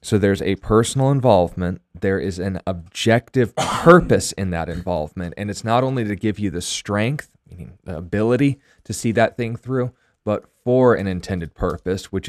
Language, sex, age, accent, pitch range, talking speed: English, male, 20-39, American, 90-110 Hz, 175 wpm